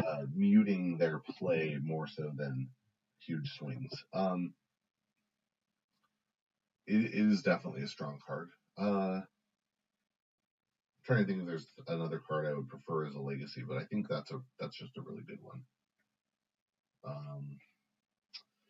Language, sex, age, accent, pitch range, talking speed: English, male, 40-59, American, 85-135 Hz, 140 wpm